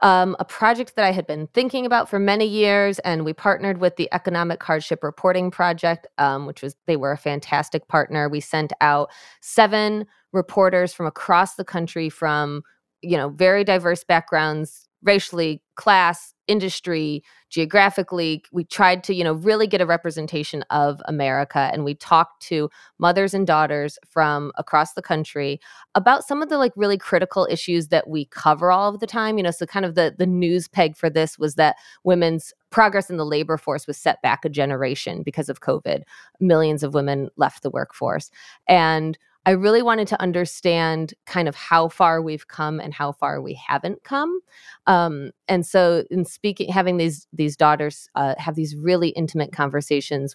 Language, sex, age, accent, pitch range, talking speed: English, female, 20-39, American, 150-185 Hz, 180 wpm